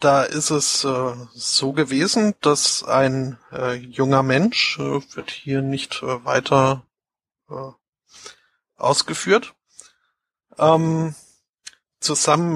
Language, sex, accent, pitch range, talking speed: German, male, German, 135-160 Hz, 70 wpm